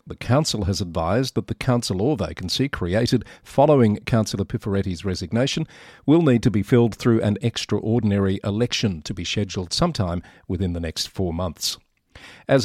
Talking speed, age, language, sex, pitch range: 155 wpm, 50-69, English, male, 100-130 Hz